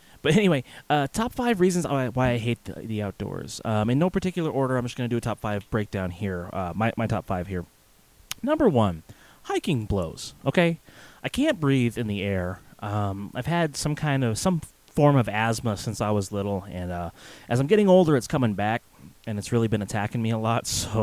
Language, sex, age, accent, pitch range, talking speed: English, male, 30-49, American, 100-130 Hz, 215 wpm